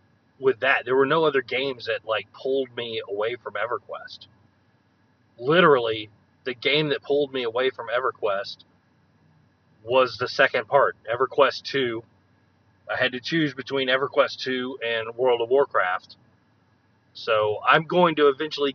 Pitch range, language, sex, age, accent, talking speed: 110-145 Hz, English, male, 30-49, American, 145 wpm